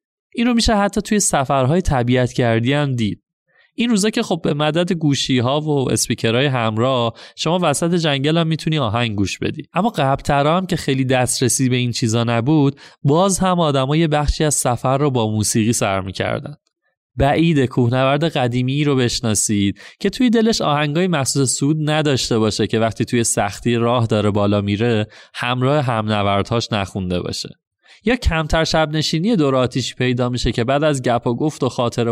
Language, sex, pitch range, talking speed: Persian, male, 115-155 Hz, 160 wpm